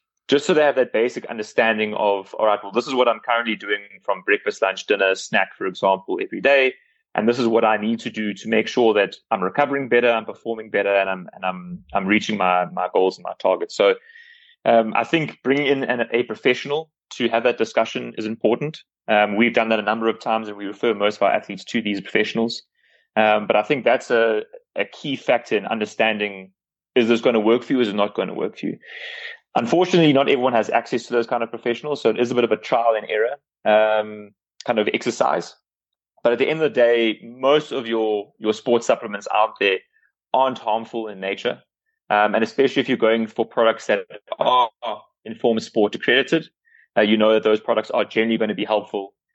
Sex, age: male, 20-39